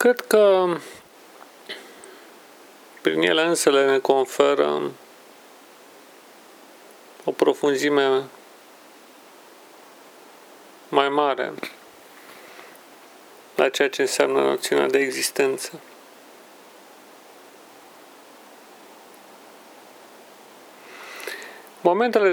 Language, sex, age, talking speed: Romanian, male, 40-59, 55 wpm